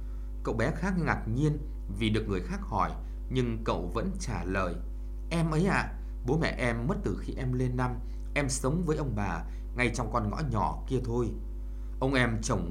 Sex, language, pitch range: male, Vietnamese, 90-135 Hz